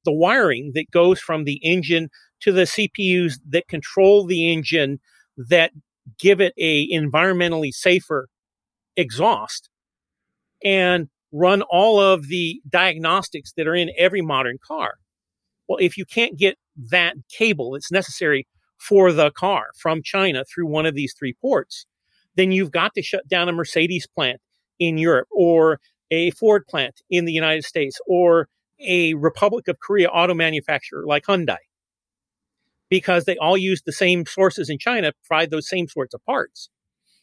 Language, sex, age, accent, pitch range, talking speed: English, male, 40-59, American, 160-190 Hz, 155 wpm